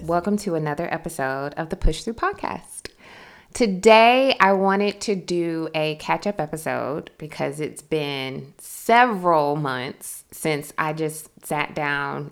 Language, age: English, 20-39